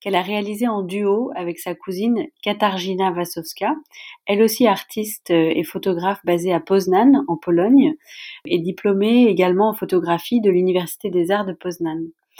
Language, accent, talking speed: French, French, 150 wpm